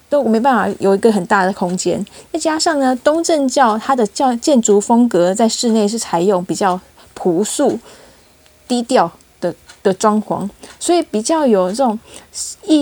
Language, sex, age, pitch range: Chinese, female, 20-39, 200-260 Hz